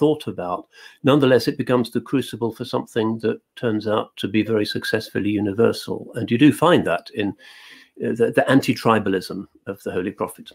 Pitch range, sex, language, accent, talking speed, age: 95-115 Hz, male, English, British, 175 wpm, 50-69